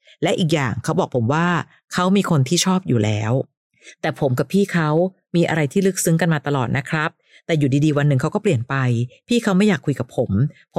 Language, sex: Thai, female